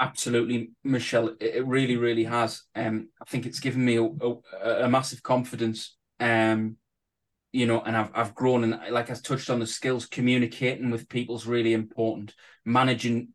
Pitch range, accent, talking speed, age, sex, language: 110-125 Hz, British, 170 wpm, 20-39, male, English